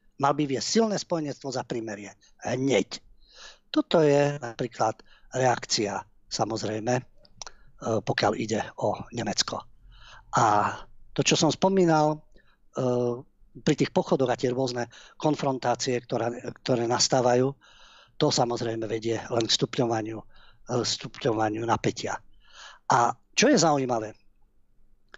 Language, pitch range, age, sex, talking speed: Slovak, 115-155 Hz, 50-69, male, 100 wpm